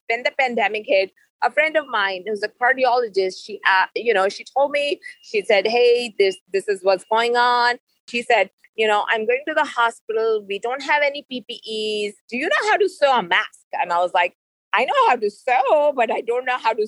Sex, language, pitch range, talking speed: female, English, 220-310 Hz, 230 wpm